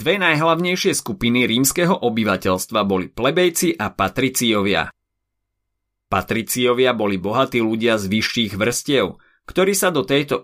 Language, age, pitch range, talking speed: Slovak, 30-49, 100-140 Hz, 115 wpm